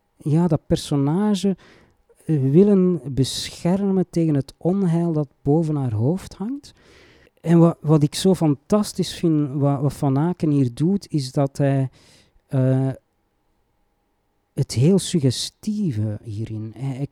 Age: 40-59